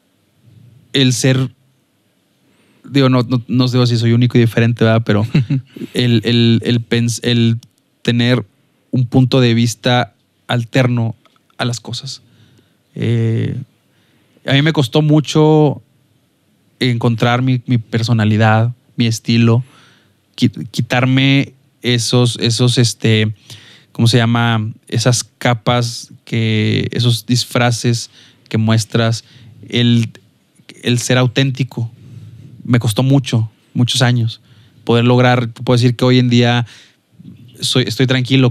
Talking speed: 115 wpm